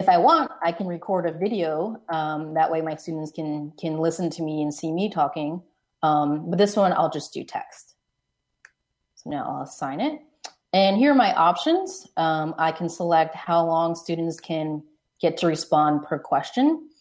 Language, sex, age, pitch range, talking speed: English, female, 30-49, 155-180 Hz, 185 wpm